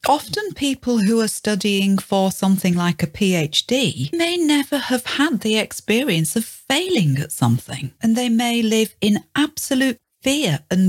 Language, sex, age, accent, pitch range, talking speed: English, female, 40-59, British, 160-230 Hz, 155 wpm